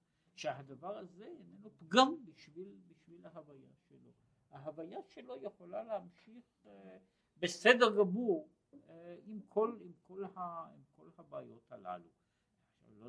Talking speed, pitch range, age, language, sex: 105 wpm, 120-185 Hz, 60-79, Hebrew, male